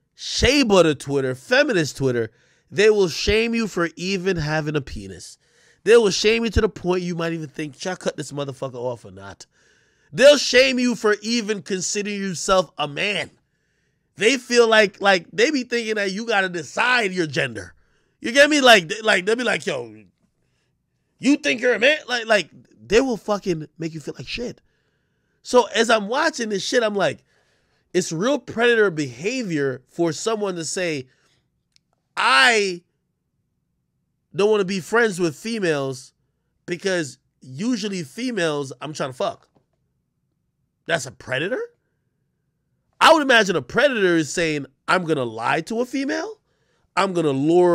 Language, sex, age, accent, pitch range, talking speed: English, male, 20-39, American, 150-220 Hz, 165 wpm